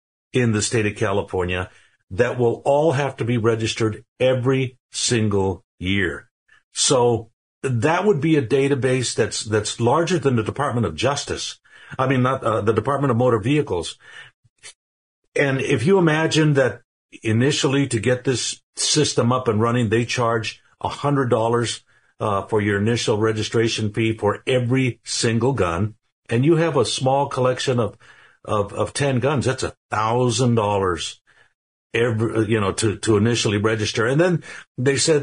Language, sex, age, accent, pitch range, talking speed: English, male, 60-79, American, 110-140 Hz, 155 wpm